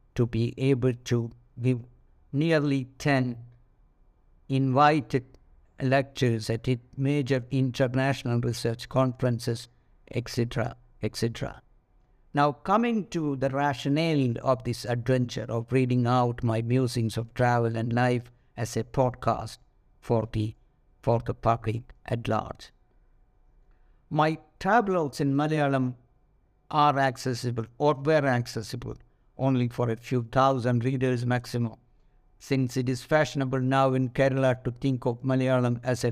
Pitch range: 120-135 Hz